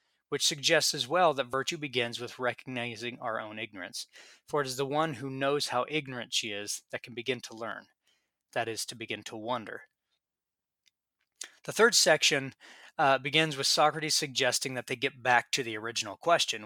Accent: American